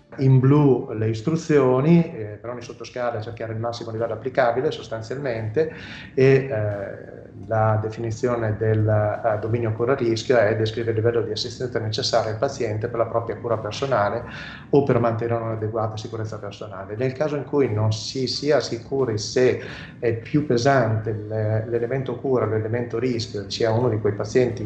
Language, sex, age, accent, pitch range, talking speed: Italian, male, 30-49, native, 105-125 Hz, 155 wpm